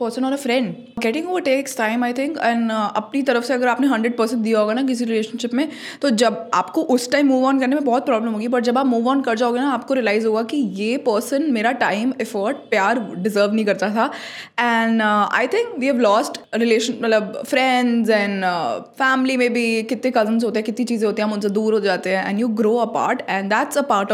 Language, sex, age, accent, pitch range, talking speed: Hindi, female, 20-39, native, 220-265 Hz, 235 wpm